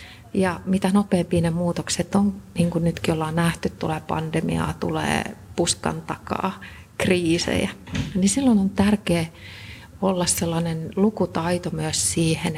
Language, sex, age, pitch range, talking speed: Finnish, female, 40-59, 160-195 Hz, 125 wpm